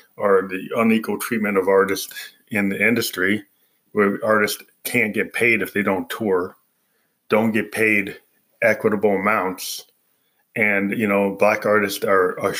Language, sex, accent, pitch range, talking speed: English, male, American, 95-110 Hz, 145 wpm